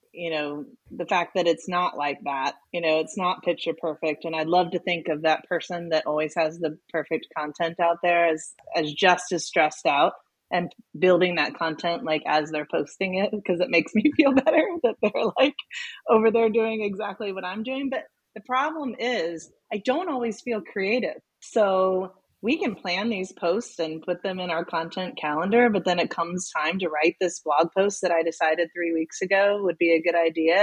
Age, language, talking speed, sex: 30-49, English, 205 wpm, female